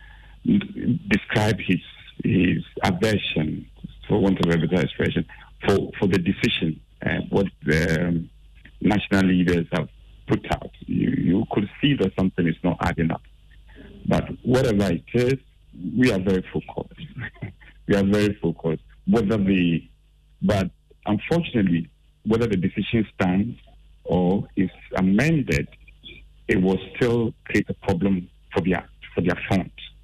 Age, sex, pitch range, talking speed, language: 50-69, male, 90-120 Hz, 130 wpm, English